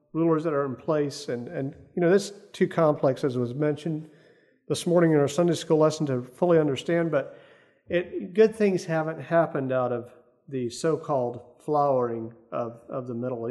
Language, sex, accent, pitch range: English, male, American, 130-170 Hz